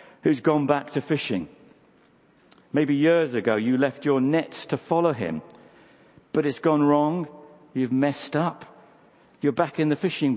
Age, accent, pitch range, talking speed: 50-69, British, 140-190 Hz, 155 wpm